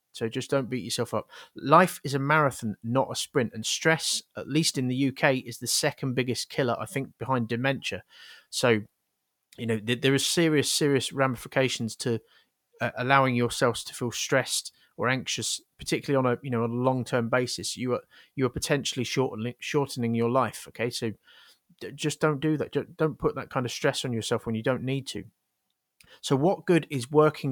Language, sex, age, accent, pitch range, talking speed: English, male, 30-49, British, 115-140 Hz, 200 wpm